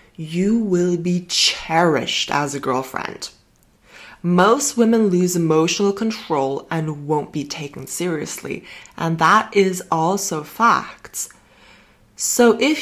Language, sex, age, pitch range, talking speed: English, female, 20-39, 160-220 Hz, 110 wpm